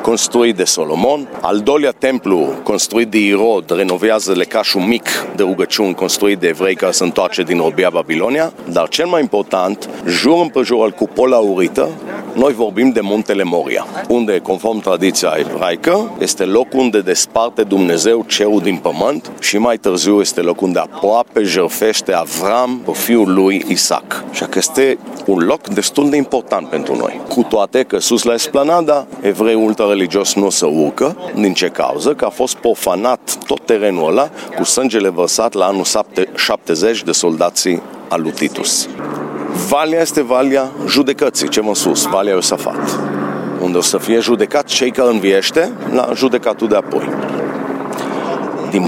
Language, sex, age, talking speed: Romanian, male, 40-59, 155 wpm